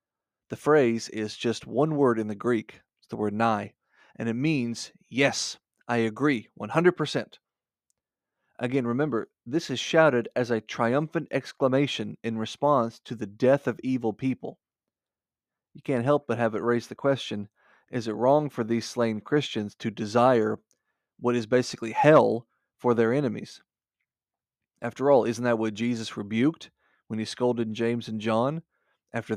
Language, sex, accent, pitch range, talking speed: English, male, American, 115-140 Hz, 155 wpm